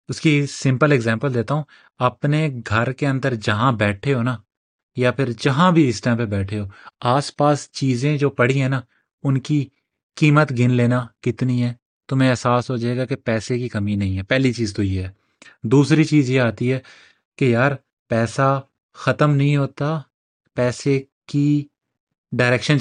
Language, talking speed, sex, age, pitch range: Urdu, 175 wpm, male, 30-49, 115-140 Hz